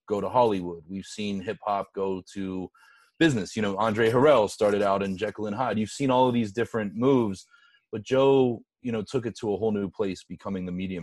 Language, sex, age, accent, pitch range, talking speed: English, male, 30-49, American, 90-110 Hz, 220 wpm